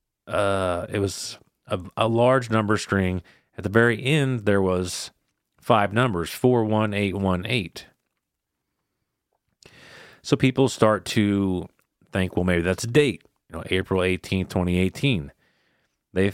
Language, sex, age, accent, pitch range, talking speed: English, male, 40-59, American, 90-110 Hz, 120 wpm